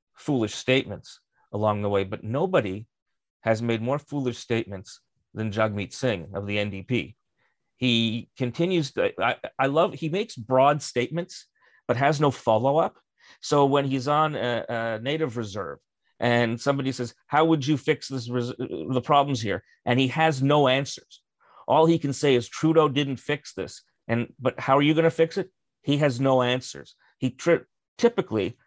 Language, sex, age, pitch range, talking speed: English, male, 40-59, 115-145 Hz, 175 wpm